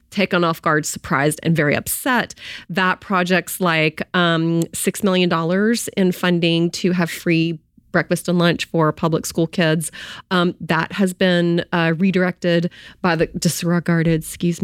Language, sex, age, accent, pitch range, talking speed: English, female, 30-49, American, 170-200 Hz, 150 wpm